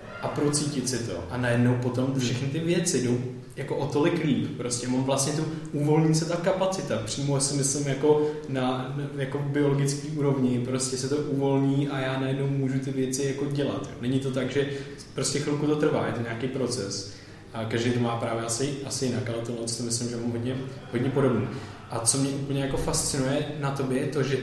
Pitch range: 115-140 Hz